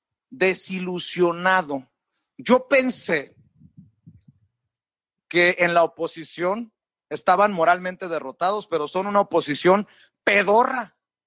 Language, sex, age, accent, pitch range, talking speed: Spanish, male, 40-59, Mexican, 170-235 Hz, 80 wpm